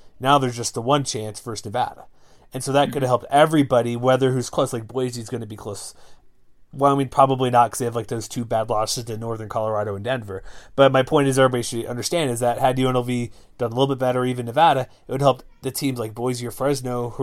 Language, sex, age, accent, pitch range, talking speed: English, male, 30-49, American, 115-140 Hz, 245 wpm